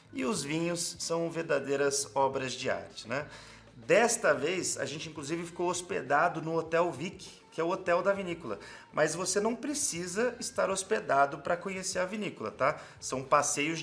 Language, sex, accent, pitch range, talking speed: Portuguese, male, Brazilian, 135-180 Hz, 165 wpm